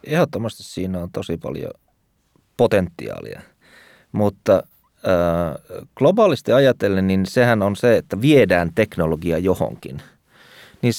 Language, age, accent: Finnish, 30-49, native